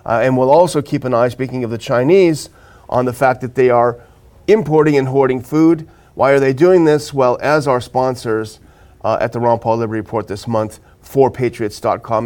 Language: English